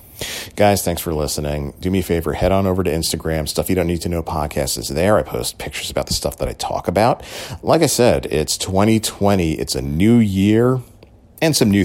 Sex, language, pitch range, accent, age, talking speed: male, English, 75-100 Hz, American, 40-59, 225 wpm